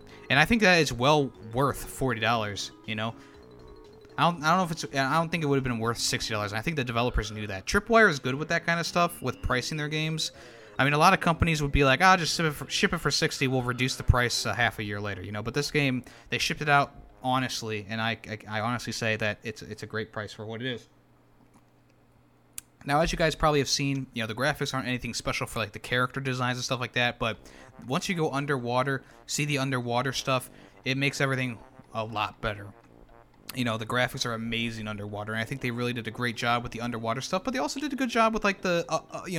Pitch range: 115-145 Hz